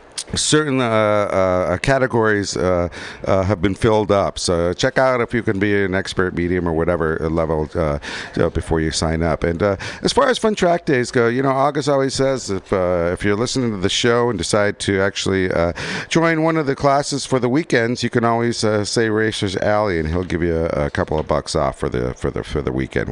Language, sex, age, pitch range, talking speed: English, male, 50-69, 90-120 Hz, 230 wpm